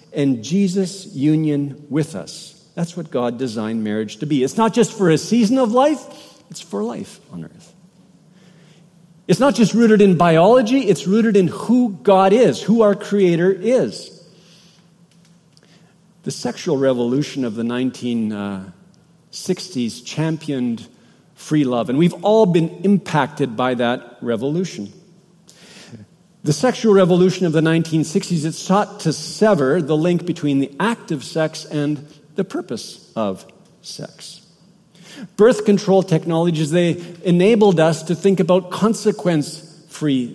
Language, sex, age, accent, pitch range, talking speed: English, male, 50-69, American, 155-195 Hz, 135 wpm